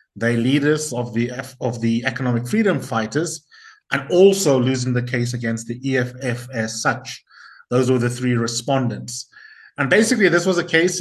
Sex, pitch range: male, 125-155 Hz